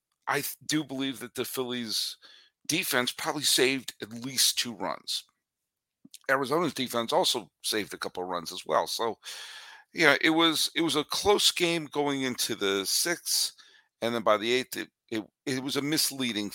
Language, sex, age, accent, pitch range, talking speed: English, male, 50-69, American, 115-160 Hz, 170 wpm